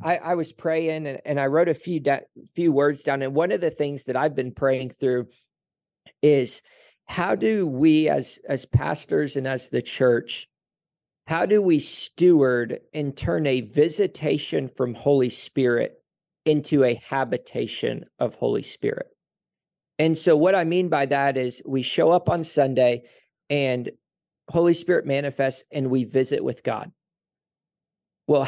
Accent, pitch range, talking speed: American, 130-155 Hz, 160 wpm